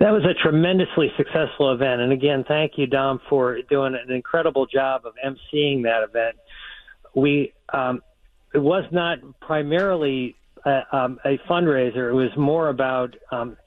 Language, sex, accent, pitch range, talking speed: English, male, American, 125-145 Hz, 155 wpm